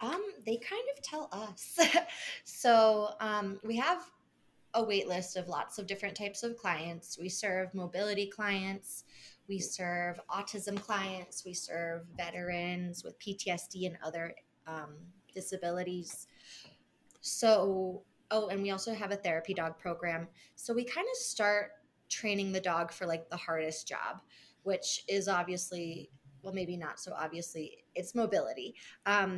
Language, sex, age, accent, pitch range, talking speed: English, female, 20-39, American, 175-210 Hz, 145 wpm